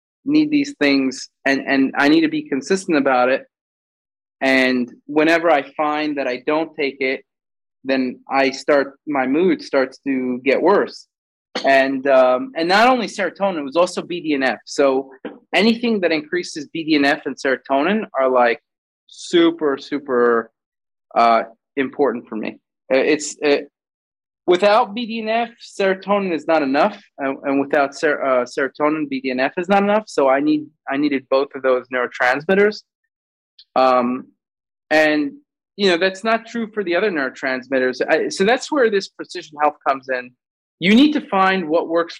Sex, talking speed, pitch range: male, 150 wpm, 135-195 Hz